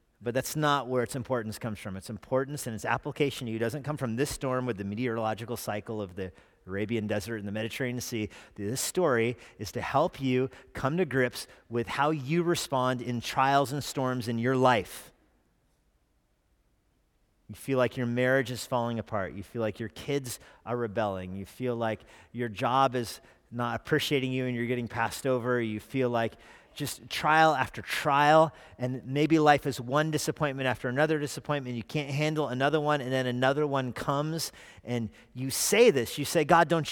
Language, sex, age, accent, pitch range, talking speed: English, male, 40-59, American, 120-165 Hz, 185 wpm